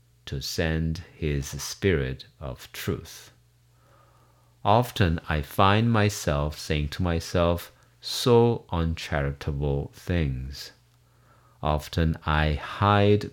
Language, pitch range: English, 75-115 Hz